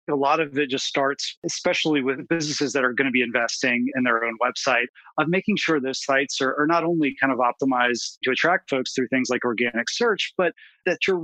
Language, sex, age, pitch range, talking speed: English, male, 30-49, 125-150 Hz, 225 wpm